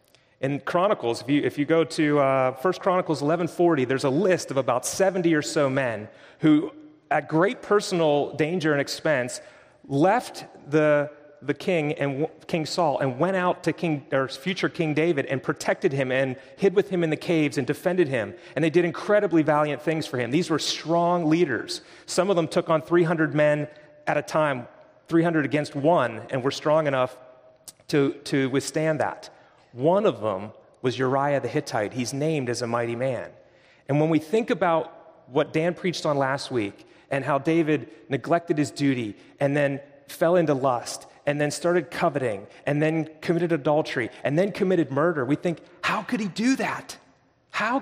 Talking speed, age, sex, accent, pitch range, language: 185 wpm, 30-49, male, American, 140-175 Hz, English